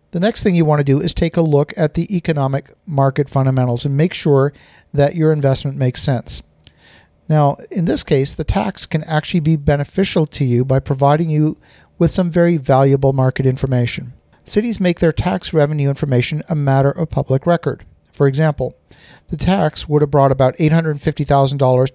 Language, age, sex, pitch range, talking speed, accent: English, 50-69, male, 130-155 Hz, 180 wpm, American